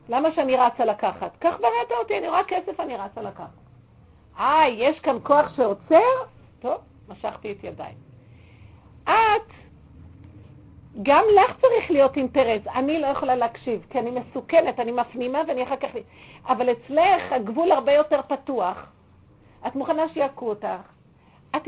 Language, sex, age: Hebrew, female, 50-69